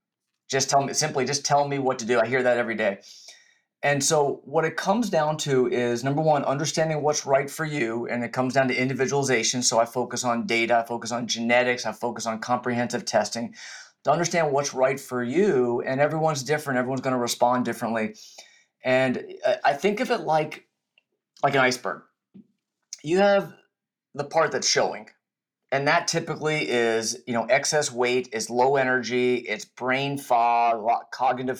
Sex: male